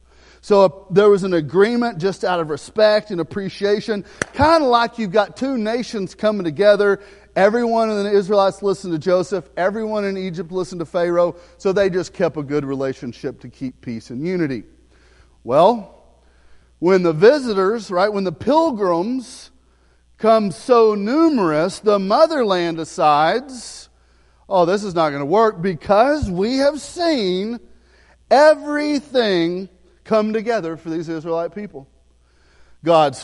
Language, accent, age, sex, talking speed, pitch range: English, American, 40-59, male, 145 wpm, 165-245 Hz